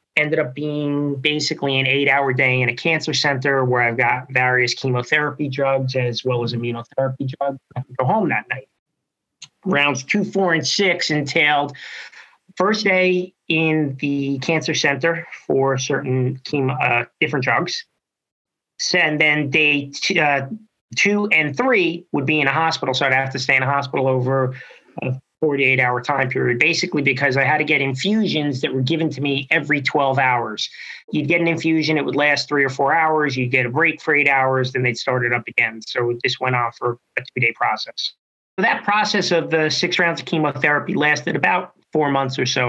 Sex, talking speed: male, 190 wpm